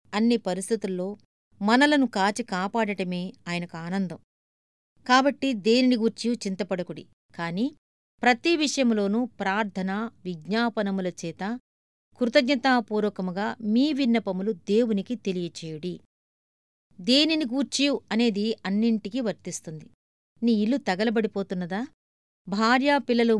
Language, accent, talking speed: Telugu, native, 70 wpm